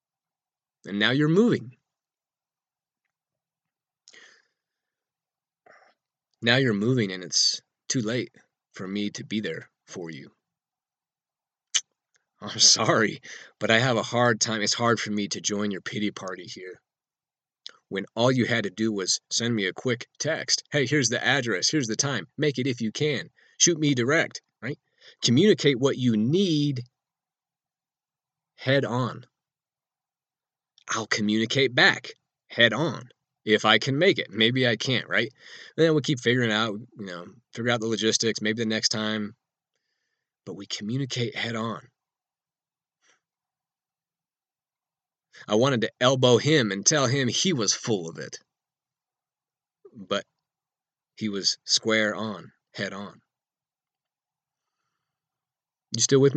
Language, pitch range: English, 110-135 Hz